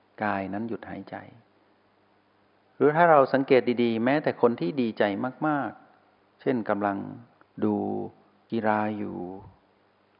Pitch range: 100-125 Hz